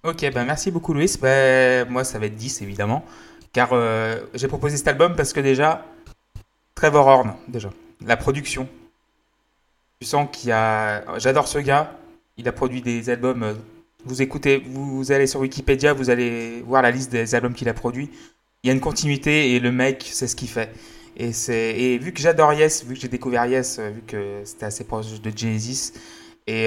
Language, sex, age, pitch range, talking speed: French, male, 20-39, 115-140 Hz, 195 wpm